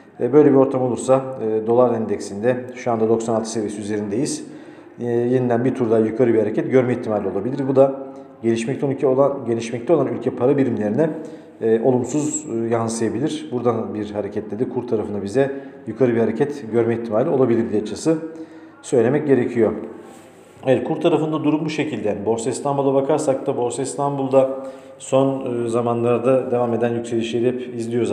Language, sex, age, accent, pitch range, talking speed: Turkish, male, 50-69, native, 115-135 Hz, 145 wpm